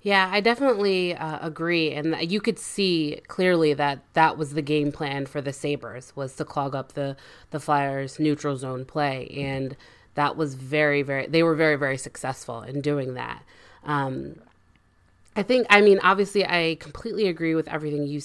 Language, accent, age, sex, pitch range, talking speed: English, American, 20-39, female, 140-170 Hz, 180 wpm